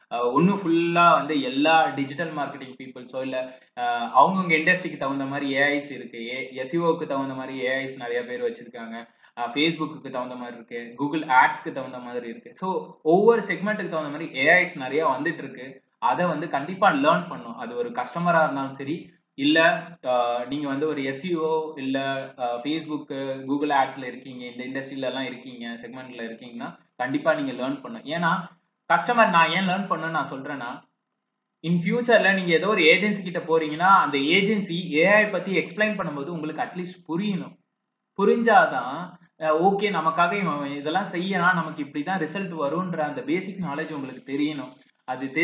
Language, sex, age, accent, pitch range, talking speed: English, male, 20-39, Indian, 135-180 Hz, 90 wpm